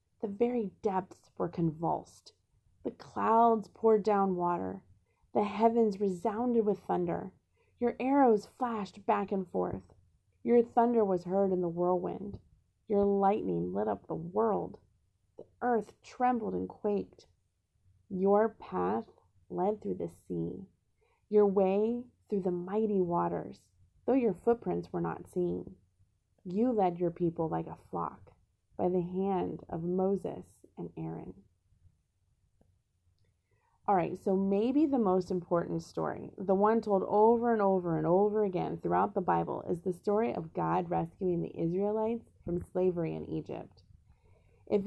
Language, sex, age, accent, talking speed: English, female, 30-49, American, 140 wpm